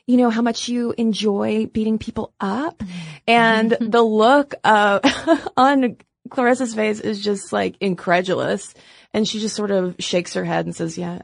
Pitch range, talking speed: 180-230 Hz, 165 wpm